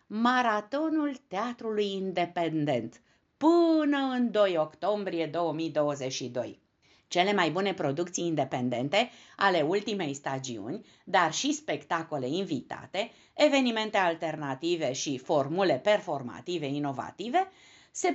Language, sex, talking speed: Romanian, female, 90 wpm